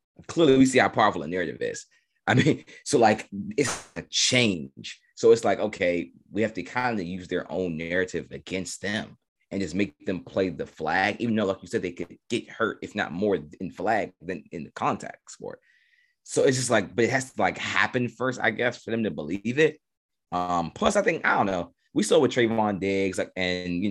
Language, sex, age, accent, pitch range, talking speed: English, male, 30-49, American, 90-125 Hz, 225 wpm